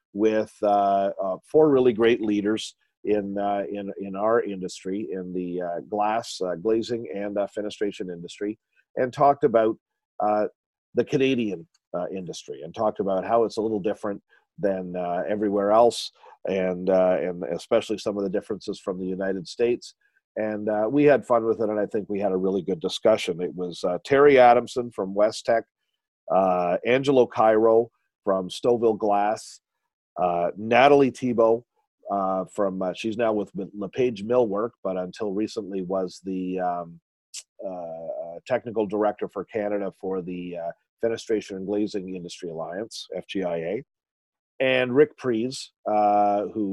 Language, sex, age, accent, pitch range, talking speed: English, male, 40-59, American, 95-115 Hz, 155 wpm